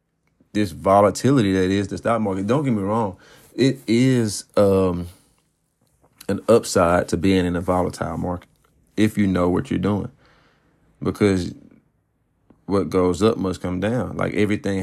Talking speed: 150 wpm